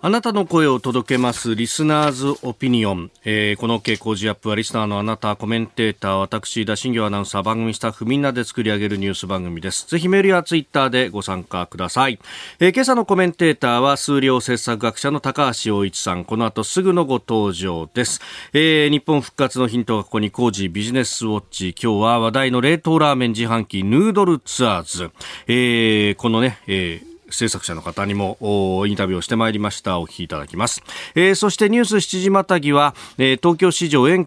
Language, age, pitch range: Japanese, 40-59, 105-150 Hz